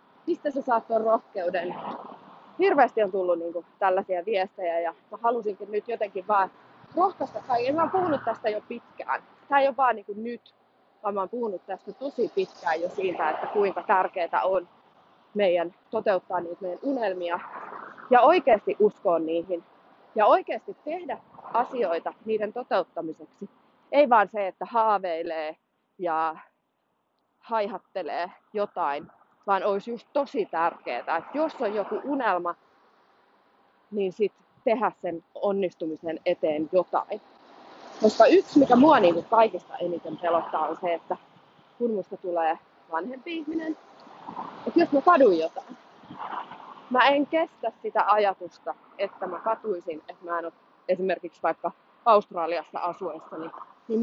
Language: Finnish